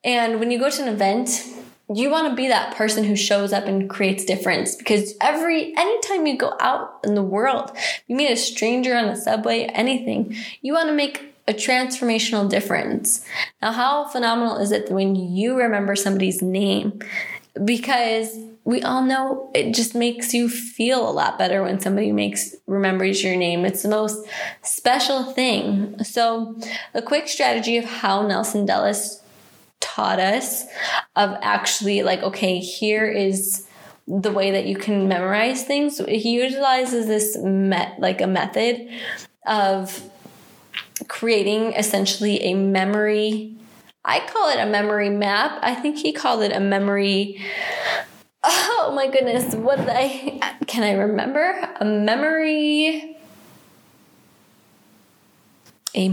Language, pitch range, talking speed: English, 200-255 Hz, 145 wpm